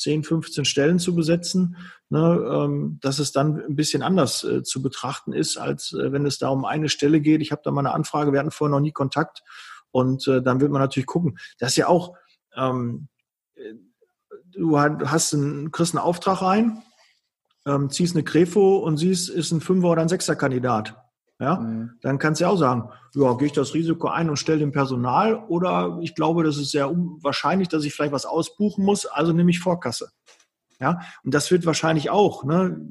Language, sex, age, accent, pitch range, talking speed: German, male, 40-59, German, 140-170 Hz, 200 wpm